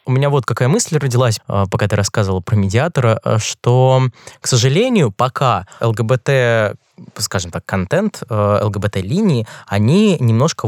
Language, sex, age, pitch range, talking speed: Russian, male, 20-39, 110-140 Hz, 125 wpm